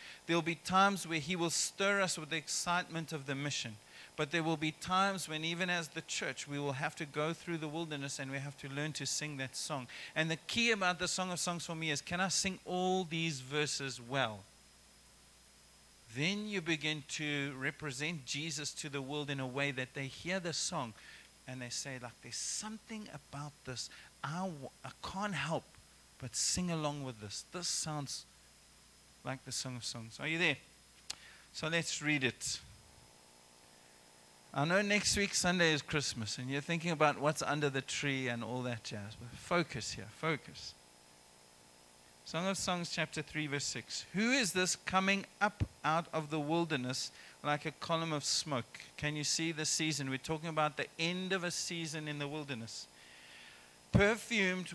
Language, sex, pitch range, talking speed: English, male, 125-170 Hz, 185 wpm